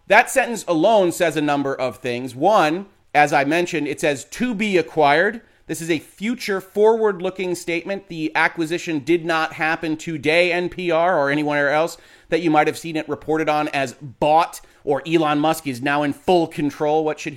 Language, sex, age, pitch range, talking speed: English, male, 30-49, 145-175 Hz, 185 wpm